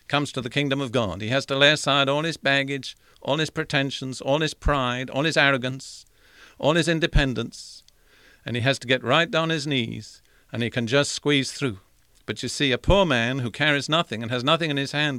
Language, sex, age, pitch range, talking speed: English, male, 50-69, 120-150 Hz, 220 wpm